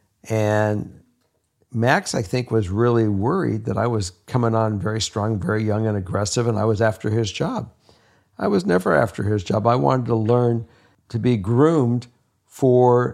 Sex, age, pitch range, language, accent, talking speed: male, 60-79, 105-125 Hz, English, American, 175 wpm